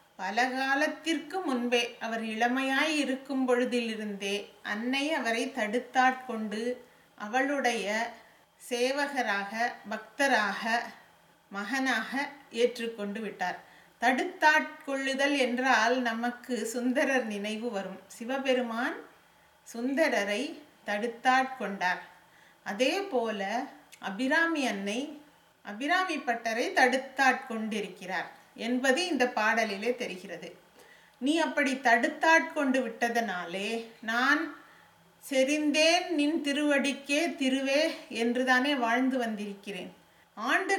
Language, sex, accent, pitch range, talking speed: English, female, Indian, 230-285 Hz, 70 wpm